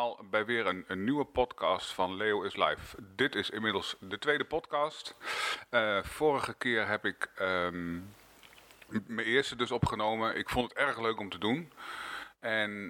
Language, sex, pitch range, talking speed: Dutch, male, 100-120 Hz, 160 wpm